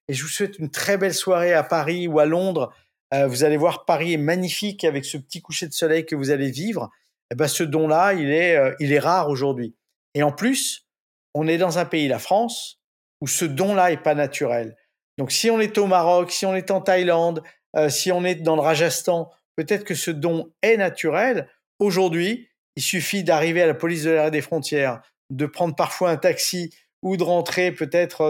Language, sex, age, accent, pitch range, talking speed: French, male, 50-69, French, 150-180 Hz, 215 wpm